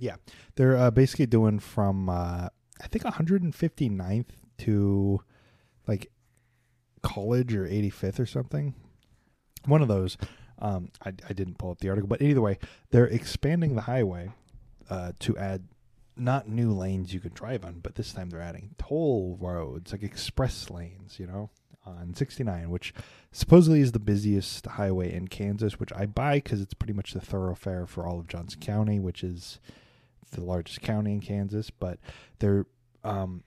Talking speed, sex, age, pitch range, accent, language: 165 wpm, male, 30-49, 95-120 Hz, American, English